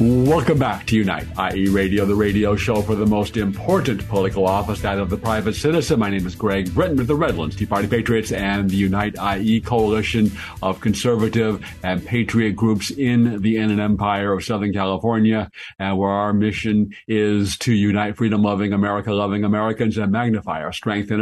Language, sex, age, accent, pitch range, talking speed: English, male, 50-69, American, 100-120 Hz, 180 wpm